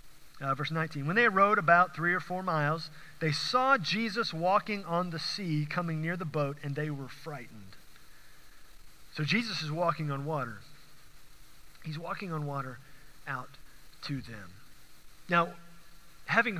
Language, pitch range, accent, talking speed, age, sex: English, 150-215 Hz, American, 150 wpm, 40-59, male